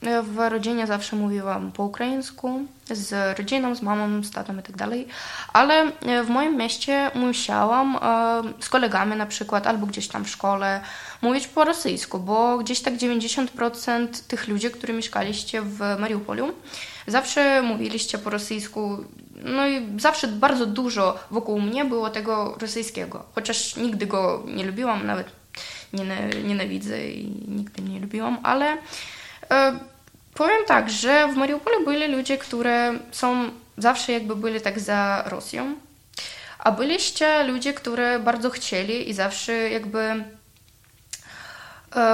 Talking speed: 135 wpm